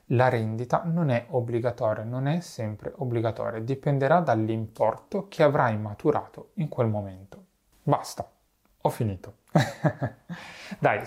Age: 30-49